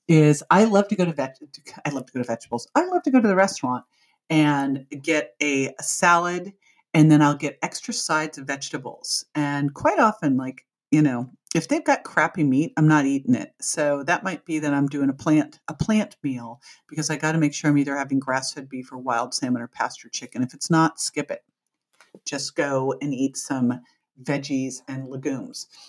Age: 50-69